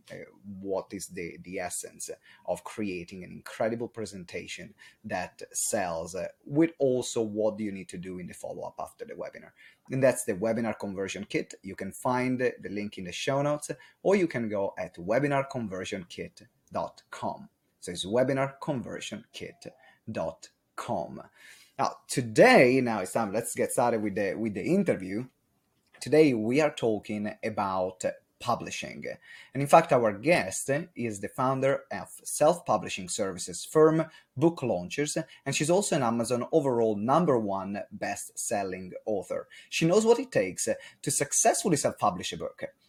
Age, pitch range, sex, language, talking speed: 30-49, 105-150 Hz, male, English, 145 wpm